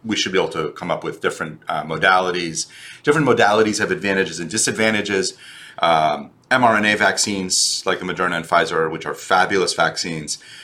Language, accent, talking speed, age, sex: English, American, 165 wpm, 30-49, male